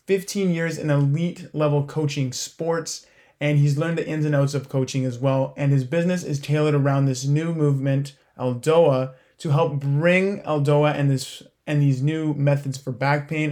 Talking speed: 180 wpm